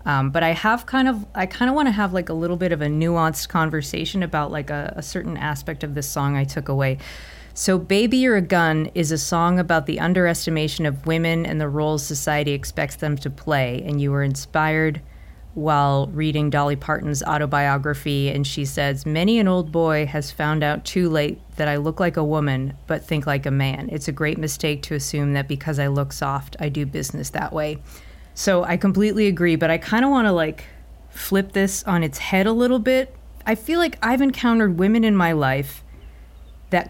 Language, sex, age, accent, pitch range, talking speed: English, female, 30-49, American, 145-185 Hz, 210 wpm